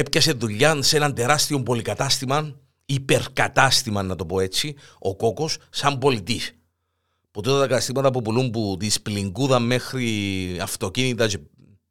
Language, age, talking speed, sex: Greek, 50-69, 125 wpm, male